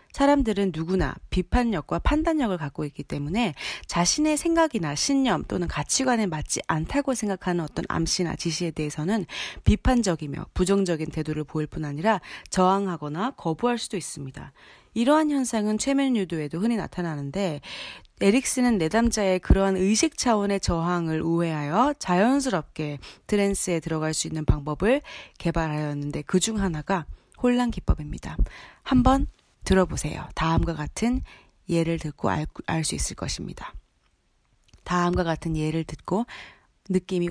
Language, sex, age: Korean, female, 30-49